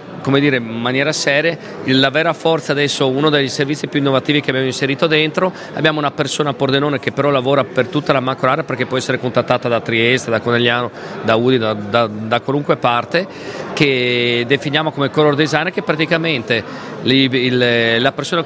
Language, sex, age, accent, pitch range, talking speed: Italian, male, 40-59, native, 130-160 Hz, 185 wpm